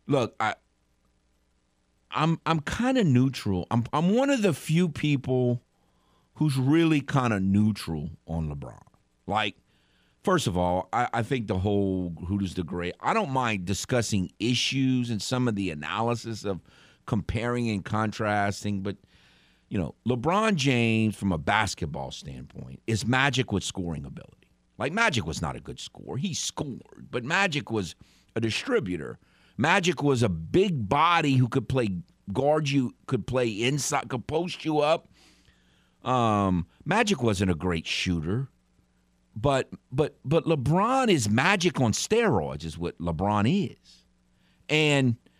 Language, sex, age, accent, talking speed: English, male, 50-69, American, 150 wpm